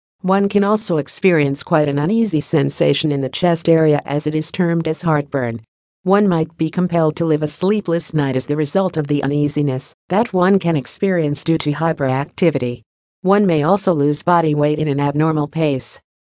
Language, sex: English, female